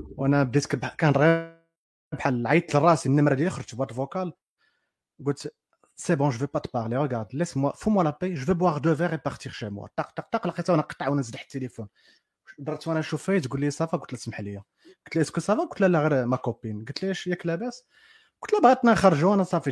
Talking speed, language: 165 wpm, Arabic